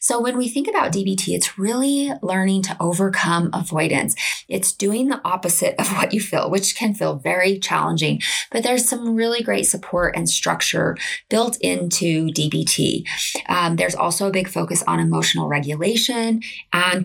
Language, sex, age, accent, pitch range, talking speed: English, female, 20-39, American, 175-230 Hz, 160 wpm